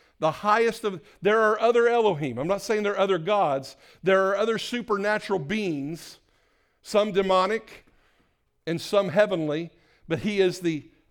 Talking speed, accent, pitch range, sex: 150 wpm, American, 140-195 Hz, male